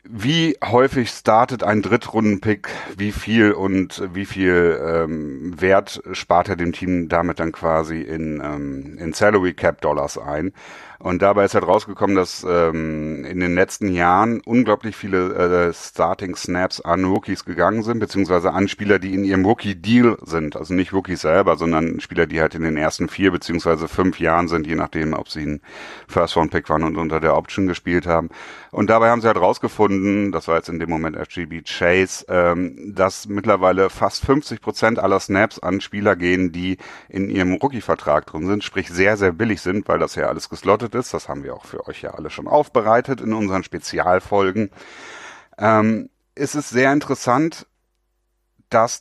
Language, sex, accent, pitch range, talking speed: German, male, German, 85-110 Hz, 175 wpm